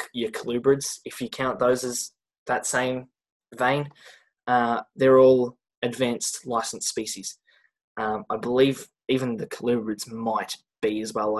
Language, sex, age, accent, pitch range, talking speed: English, male, 10-29, Australian, 115-145 Hz, 135 wpm